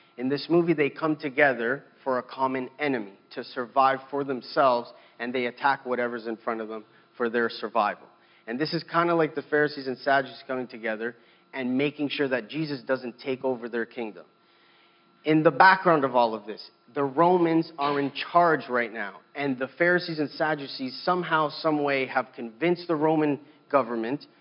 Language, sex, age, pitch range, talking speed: English, male, 30-49, 130-155 Hz, 180 wpm